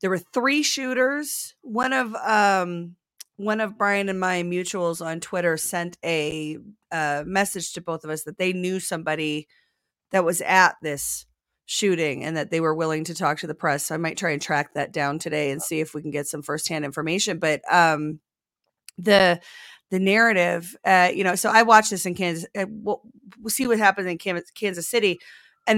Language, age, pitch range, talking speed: English, 30-49, 165-215 Hz, 195 wpm